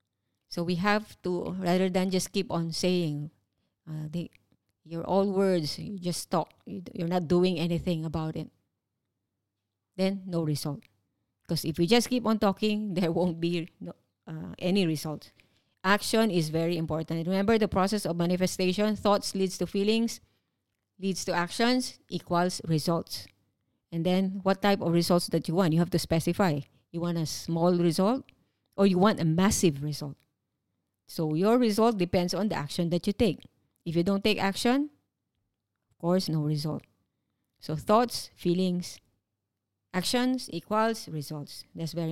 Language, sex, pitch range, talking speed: English, female, 150-195 Hz, 155 wpm